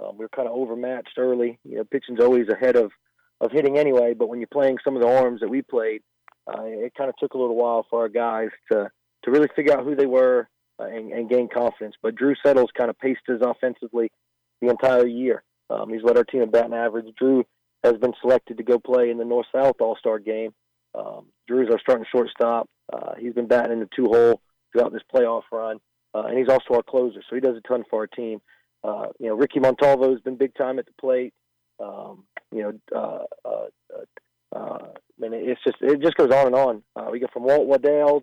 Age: 40-59